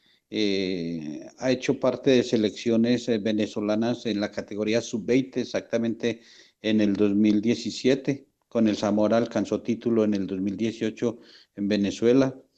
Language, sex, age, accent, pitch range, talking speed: Spanish, male, 50-69, Spanish, 105-130 Hz, 125 wpm